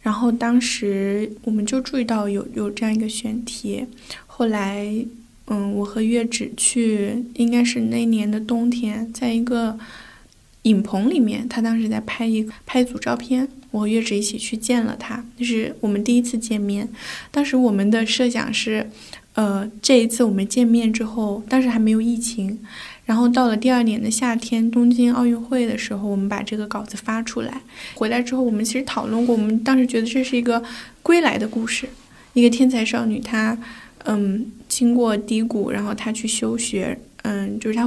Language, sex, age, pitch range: Chinese, female, 10-29, 220-245 Hz